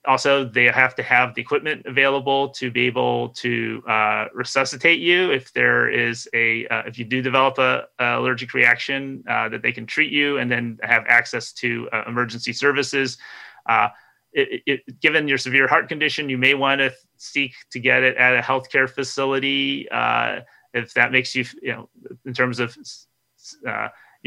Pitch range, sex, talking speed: 120-135 Hz, male, 180 wpm